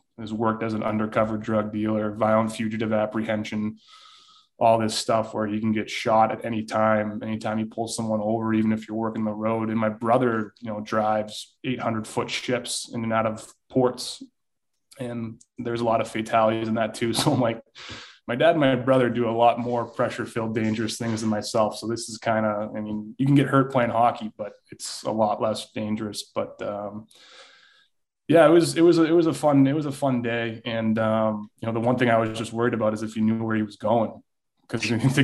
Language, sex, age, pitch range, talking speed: English, male, 20-39, 110-130 Hz, 220 wpm